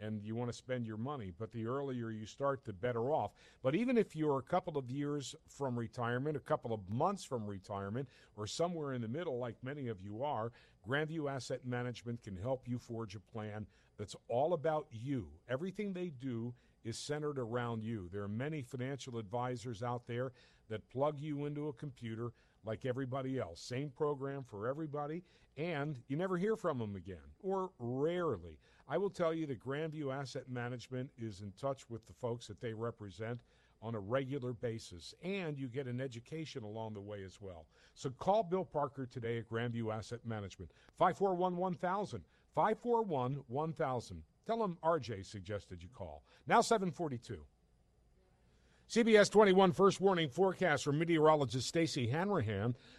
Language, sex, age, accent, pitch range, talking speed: English, male, 50-69, American, 115-150 Hz, 170 wpm